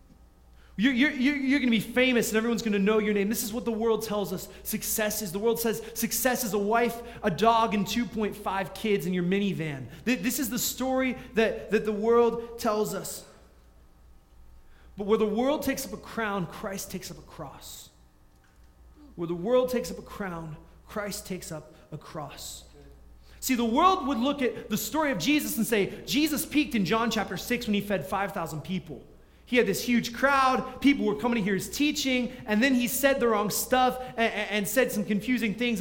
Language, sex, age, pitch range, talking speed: English, male, 30-49, 195-250 Hz, 205 wpm